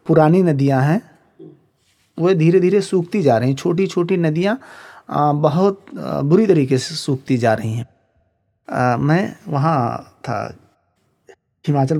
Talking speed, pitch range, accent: 125 wpm, 130-170 Hz, native